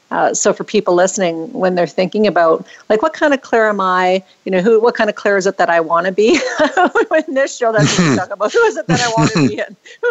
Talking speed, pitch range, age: 280 wpm, 175-205 Hz, 50-69